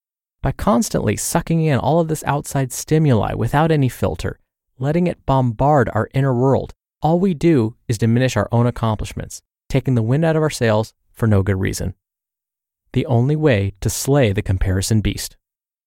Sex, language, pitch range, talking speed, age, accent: male, English, 110-150 Hz, 170 wpm, 30-49, American